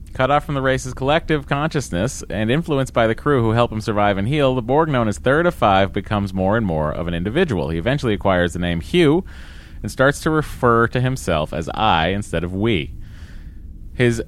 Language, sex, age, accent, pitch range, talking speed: English, male, 30-49, American, 90-125 Hz, 210 wpm